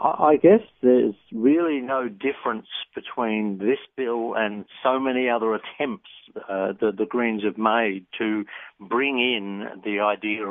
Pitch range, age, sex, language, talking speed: 110-150 Hz, 60-79, male, English, 145 wpm